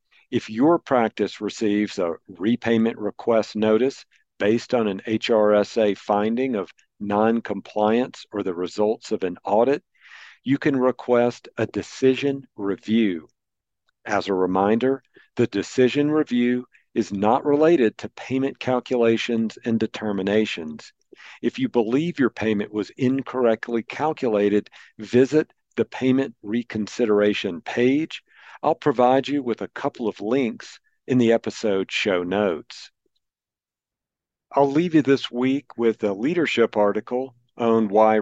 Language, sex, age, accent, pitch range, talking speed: English, male, 50-69, American, 105-130 Hz, 120 wpm